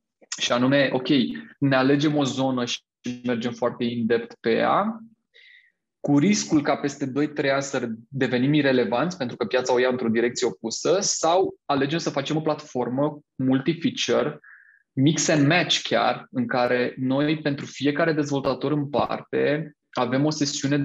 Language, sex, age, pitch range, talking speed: Romanian, male, 20-39, 125-150 Hz, 145 wpm